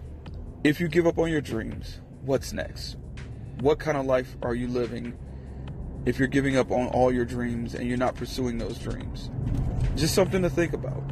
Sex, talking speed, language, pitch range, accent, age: male, 190 wpm, English, 125-135 Hz, American, 40-59